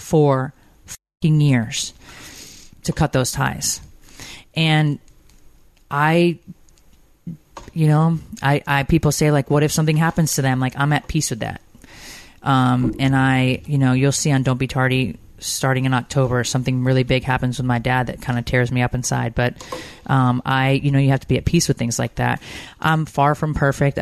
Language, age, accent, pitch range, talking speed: English, 30-49, American, 130-170 Hz, 185 wpm